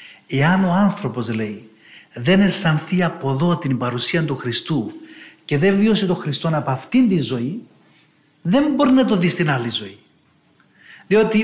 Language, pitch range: Greek, 180-255 Hz